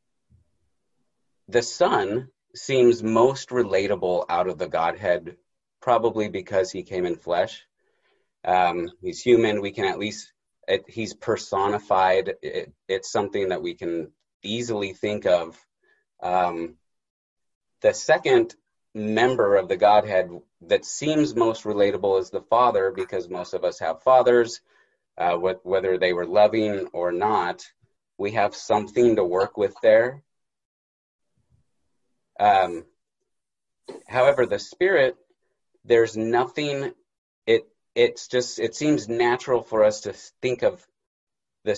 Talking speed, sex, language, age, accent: 120 wpm, male, English, 30-49, American